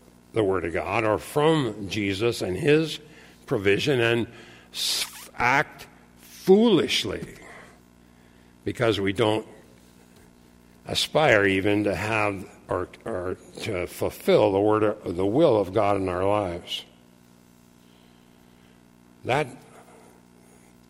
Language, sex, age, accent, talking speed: English, male, 60-79, American, 105 wpm